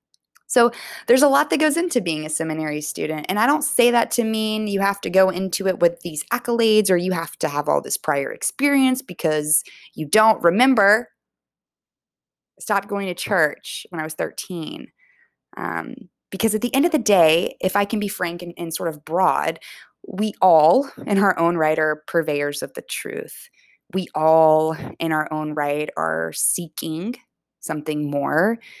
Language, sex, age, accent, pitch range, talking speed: English, female, 20-39, American, 155-205 Hz, 185 wpm